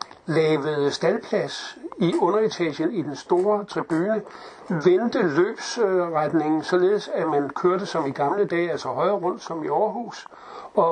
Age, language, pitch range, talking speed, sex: 60-79, Danish, 155-195 Hz, 135 wpm, male